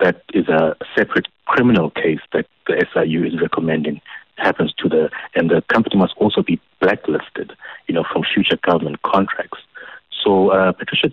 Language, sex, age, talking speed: English, male, 60-79, 160 wpm